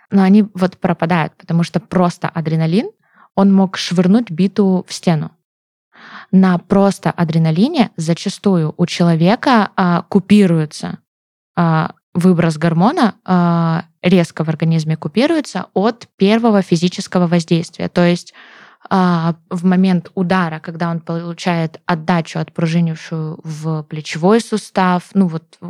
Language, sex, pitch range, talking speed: Russian, female, 165-195 Hz, 120 wpm